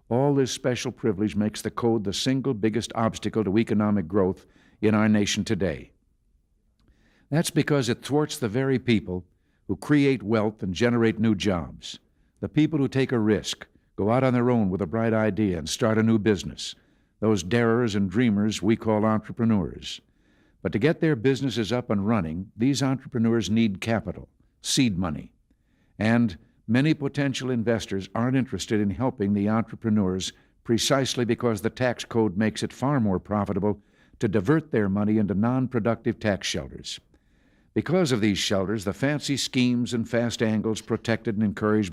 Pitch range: 105-125 Hz